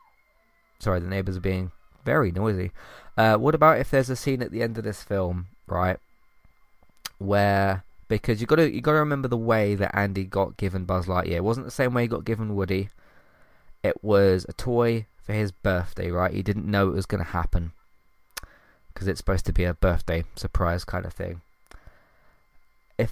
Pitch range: 95-120 Hz